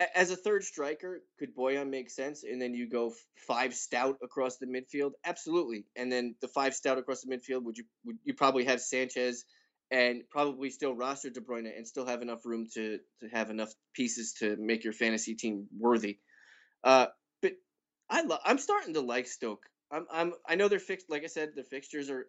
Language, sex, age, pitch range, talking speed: English, male, 20-39, 115-145 Hz, 205 wpm